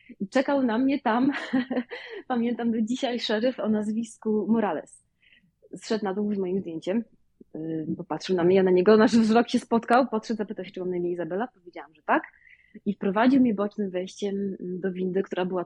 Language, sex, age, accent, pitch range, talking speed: Polish, female, 20-39, native, 185-255 Hz, 185 wpm